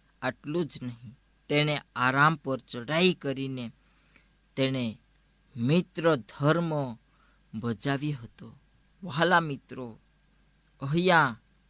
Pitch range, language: 125-170 Hz, Gujarati